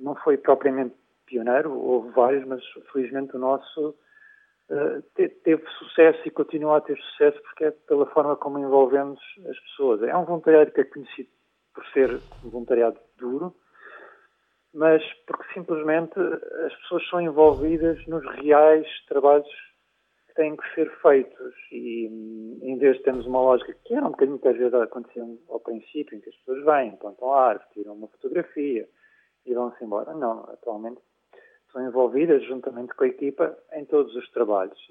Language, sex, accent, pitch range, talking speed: Portuguese, male, Portuguese, 125-170 Hz, 155 wpm